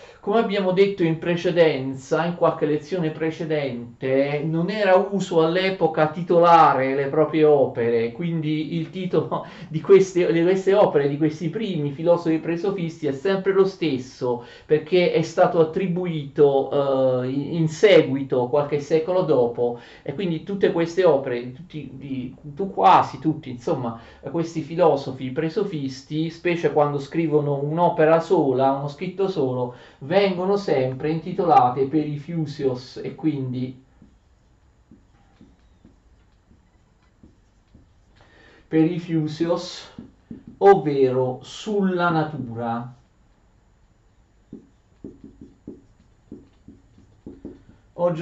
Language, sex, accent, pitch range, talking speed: Italian, male, native, 130-170 Hz, 95 wpm